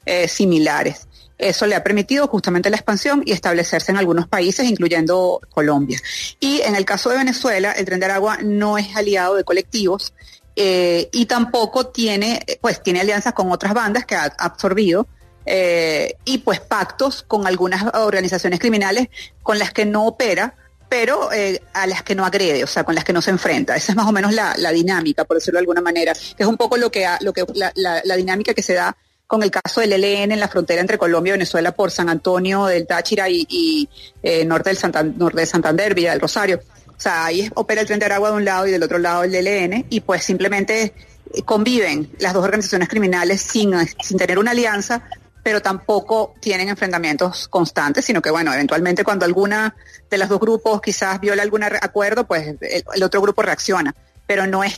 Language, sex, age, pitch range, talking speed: Spanish, female, 30-49, 175-215 Hz, 205 wpm